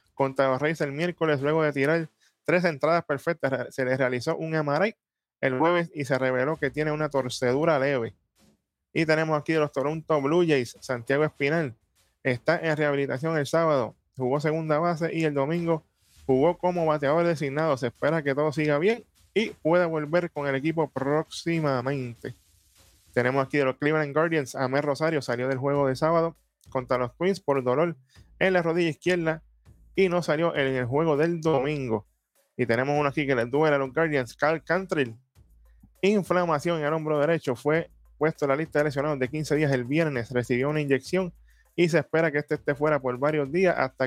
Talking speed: 185 wpm